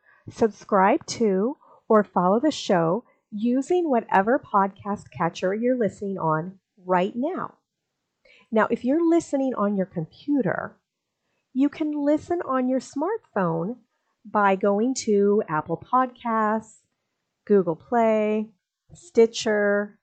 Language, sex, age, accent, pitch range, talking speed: English, female, 40-59, American, 190-255 Hz, 110 wpm